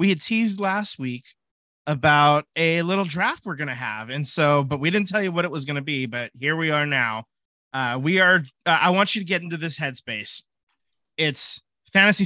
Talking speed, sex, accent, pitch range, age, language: 220 wpm, male, American, 135-175 Hz, 20-39, English